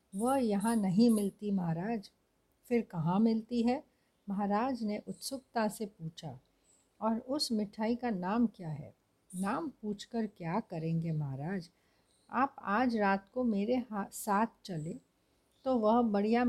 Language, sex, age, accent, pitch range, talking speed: Hindi, female, 60-79, native, 185-230 Hz, 135 wpm